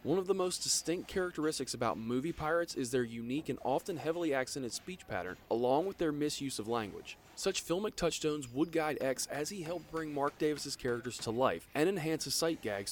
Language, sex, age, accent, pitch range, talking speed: English, male, 20-39, American, 125-180 Hz, 205 wpm